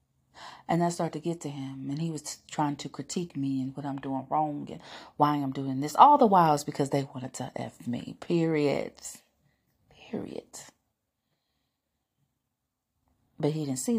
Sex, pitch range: female, 145-190 Hz